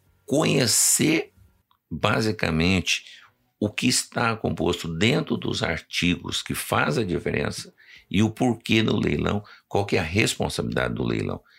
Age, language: 60-79, Portuguese